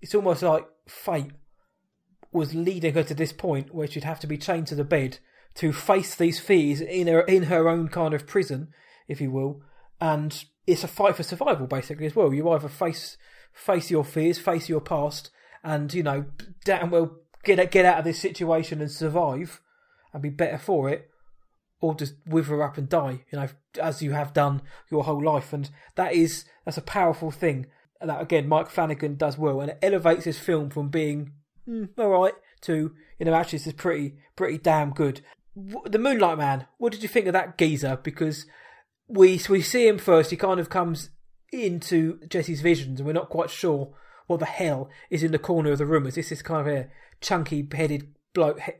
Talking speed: 205 wpm